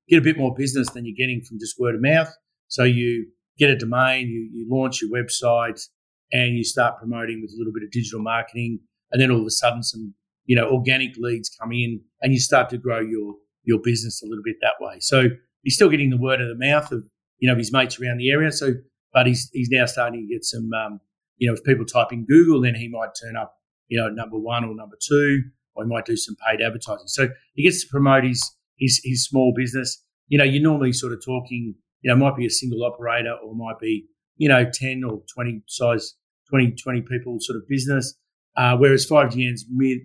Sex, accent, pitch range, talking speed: male, Australian, 115-130 Hz, 235 wpm